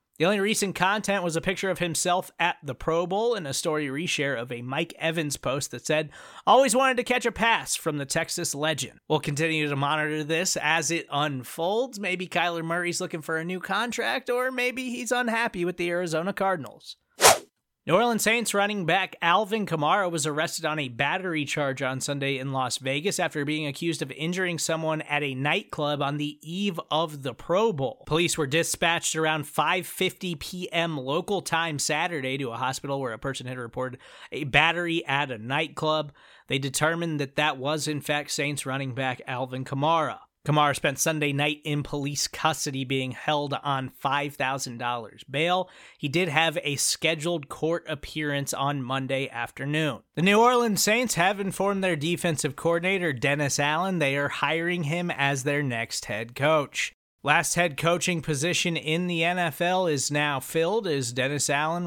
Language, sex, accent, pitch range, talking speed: English, male, American, 140-175 Hz, 175 wpm